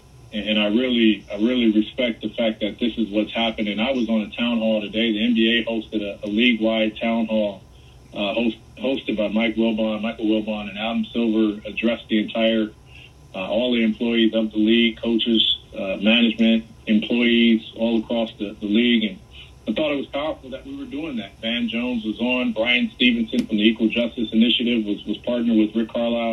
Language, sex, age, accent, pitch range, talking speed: English, male, 40-59, American, 110-120 Hz, 195 wpm